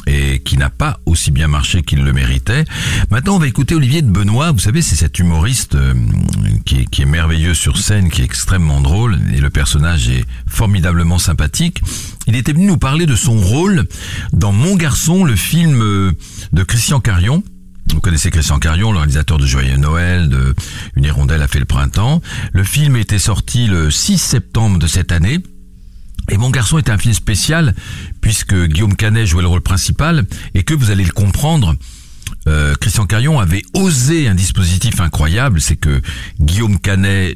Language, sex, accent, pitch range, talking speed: French, male, French, 75-110 Hz, 190 wpm